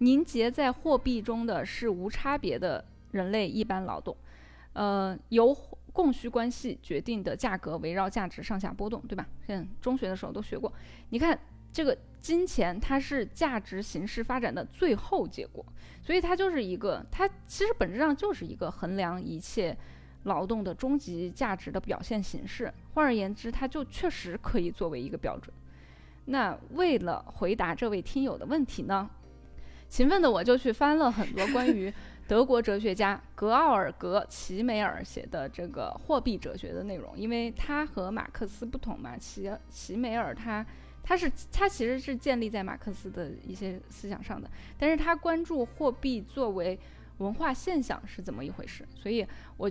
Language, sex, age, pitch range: Chinese, female, 20-39, 195-270 Hz